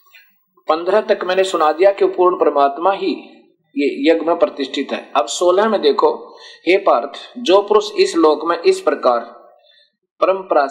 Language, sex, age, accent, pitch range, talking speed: Hindi, male, 50-69, native, 140-195 Hz, 150 wpm